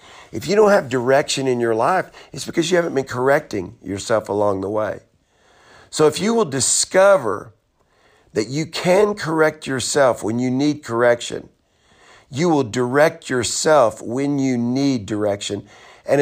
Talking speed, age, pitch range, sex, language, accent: 150 wpm, 50-69, 115-150 Hz, male, English, American